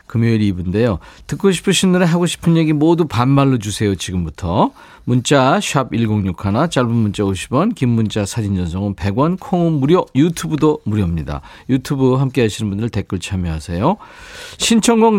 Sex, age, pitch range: male, 40-59, 110-170 Hz